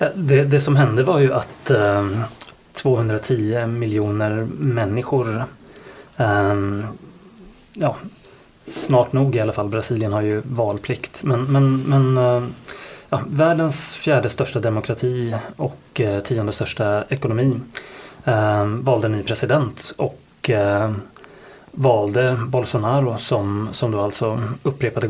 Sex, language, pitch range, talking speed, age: male, Swedish, 110-130 Hz, 95 wpm, 20-39